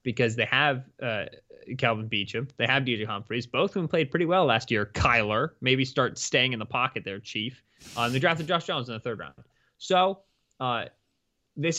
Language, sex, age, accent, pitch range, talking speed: English, male, 20-39, American, 120-150 Hz, 200 wpm